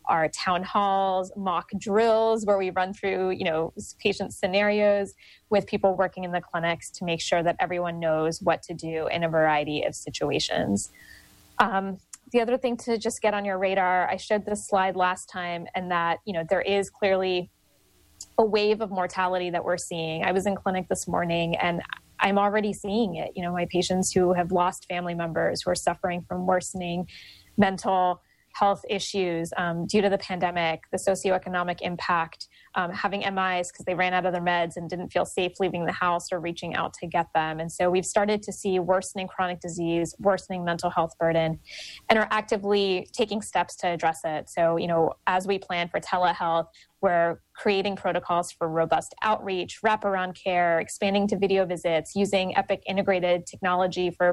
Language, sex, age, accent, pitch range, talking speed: English, female, 20-39, American, 175-200 Hz, 185 wpm